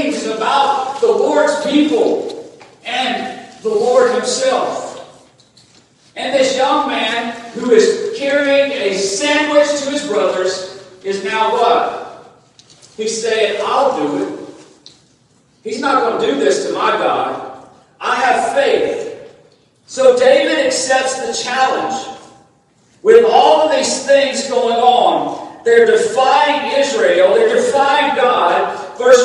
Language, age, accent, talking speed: English, 40-59, American, 120 wpm